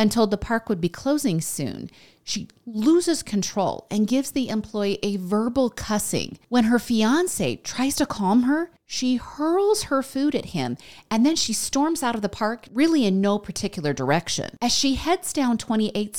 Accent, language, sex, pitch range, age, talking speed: American, English, female, 190-260 Hz, 40-59, 180 wpm